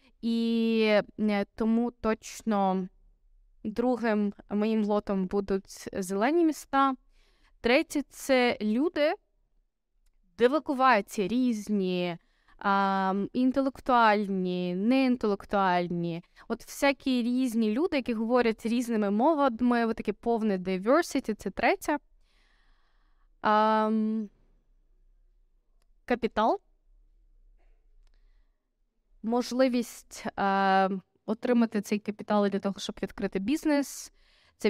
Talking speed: 80 wpm